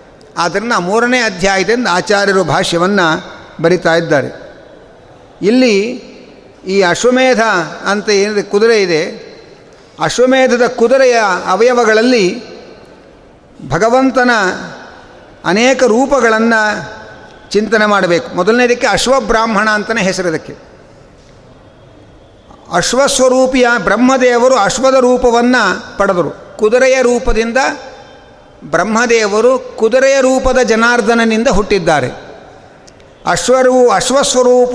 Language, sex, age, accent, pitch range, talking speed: Kannada, male, 60-79, native, 200-255 Hz, 70 wpm